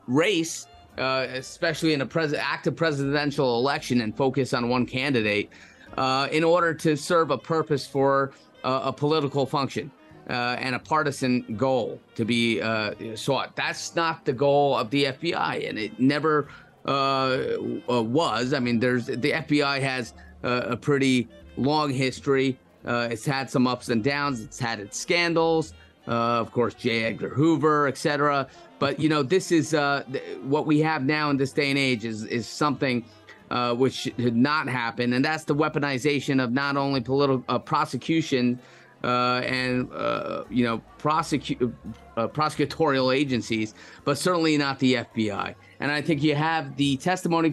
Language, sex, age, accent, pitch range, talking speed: English, male, 30-49, American, 125-150 Hz, 165 wpm